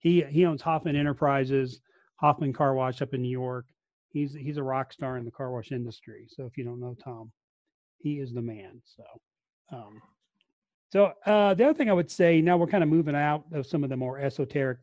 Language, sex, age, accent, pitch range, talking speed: English, male, 40-59, American, 130-160 Hz, 220 wpm